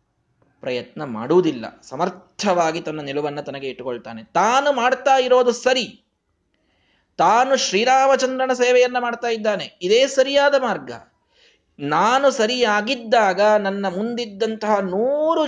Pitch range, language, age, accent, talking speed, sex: 155-245 Hz, Kannada, 30-49, native, 95 wpm, male